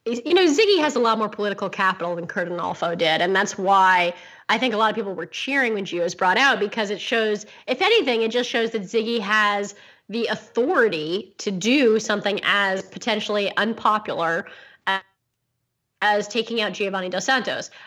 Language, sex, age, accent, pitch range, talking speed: English, female, 20-39, American, 190-240 Hz, 180 wpm